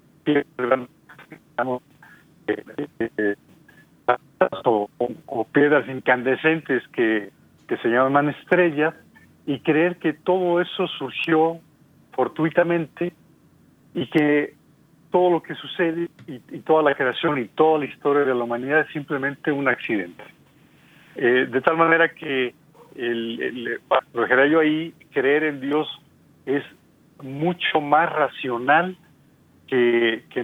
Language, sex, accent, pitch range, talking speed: Spanish, male, Mexican, 125-160 Hz, 110 wpm